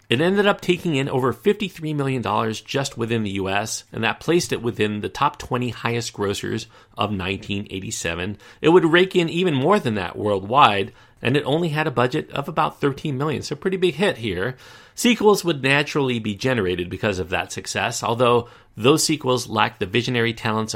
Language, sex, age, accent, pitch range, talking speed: English, male, 40-59, American, 105-140 Hz, 180 wpm